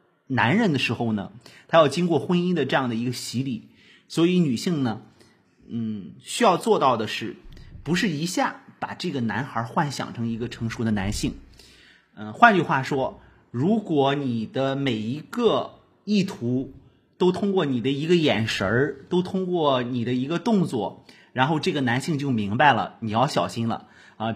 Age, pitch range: 30-49, 115-165 Hz